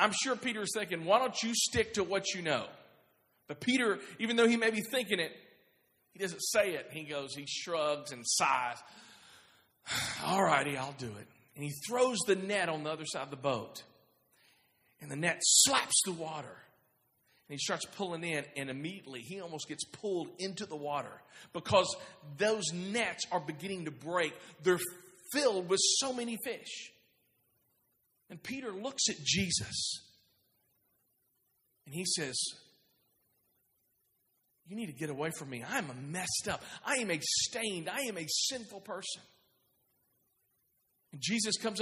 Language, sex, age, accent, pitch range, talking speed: English, male, 40-59, American, 140-210 Hz, 160 wpm